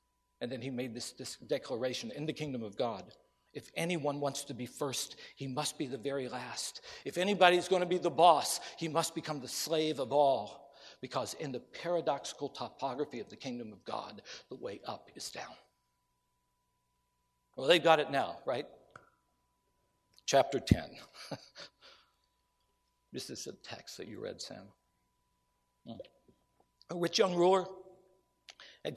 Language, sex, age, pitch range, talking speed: English, male, 60-79, 120-175 Hz, 155 wpm